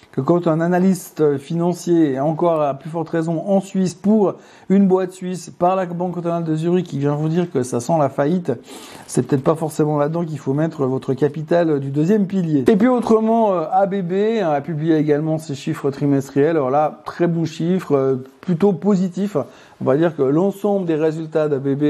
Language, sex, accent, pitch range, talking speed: French, male, French, 145-175 Hz, 195 wpm